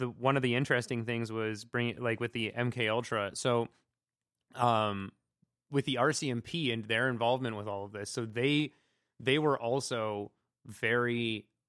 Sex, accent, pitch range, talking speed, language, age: male, American, 110-130 Hz, 160 wpm, English, 20-39